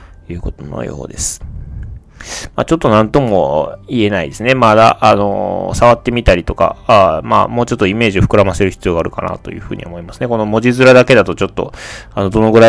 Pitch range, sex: 95-125 Hz, male